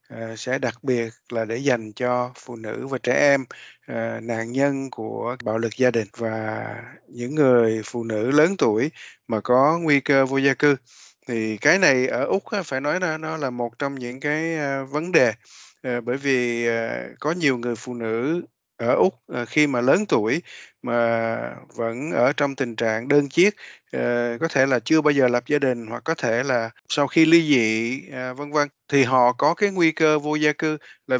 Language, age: Vietnamese, 20-39